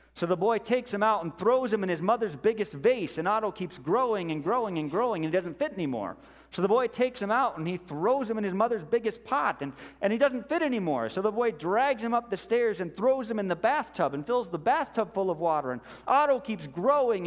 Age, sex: 40-59, male